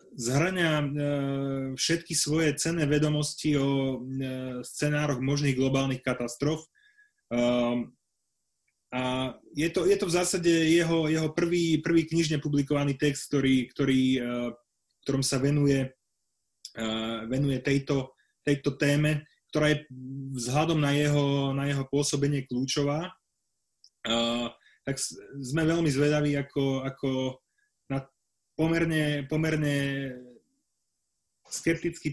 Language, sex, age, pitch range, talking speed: Slovak, male, 20-39, 130-150 Hz, 95 wpm